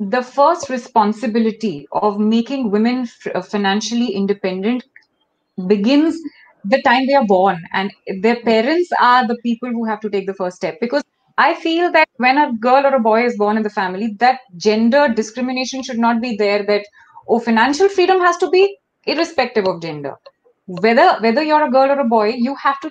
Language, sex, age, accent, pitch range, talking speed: English, female, 20-39, Indian, 215-290 Hz, 185 wpm